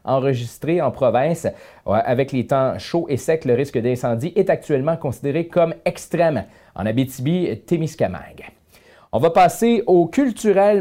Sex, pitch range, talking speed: male, 130-180 Hz, 135 wpm